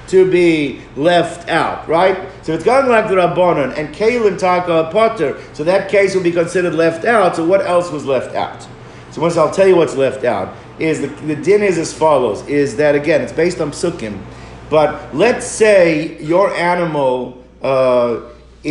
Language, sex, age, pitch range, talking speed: English, male, 50-69, 155-190 Hz, 185 wpm